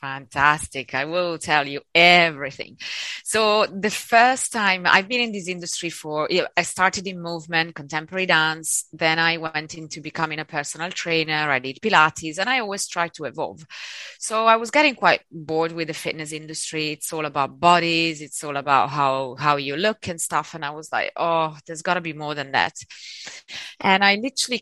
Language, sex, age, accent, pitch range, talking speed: English, female, 20-39, Italian, 150-185 Hz, 190 wpm